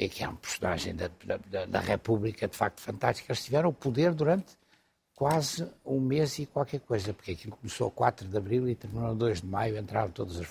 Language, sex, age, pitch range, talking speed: Portuguese, male, 60-79, 105-155 Hz, 225 wpm